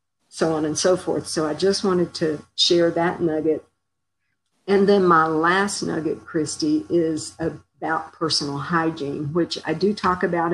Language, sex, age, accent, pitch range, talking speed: English, female, 50-69, American, 155-185 Hz, 160 wpm